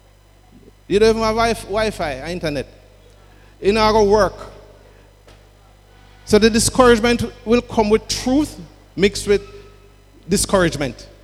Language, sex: English, male